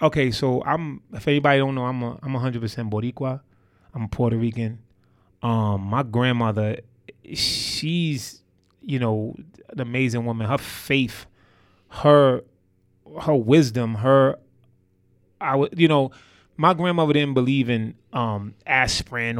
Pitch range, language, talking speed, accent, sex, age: 105-125 Hz, English, 135 wpm, American, male, 20-39